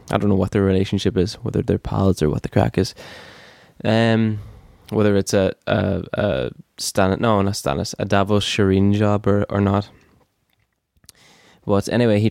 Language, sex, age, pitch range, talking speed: English, male, 10-29, 95-105 Hz, 170 wpm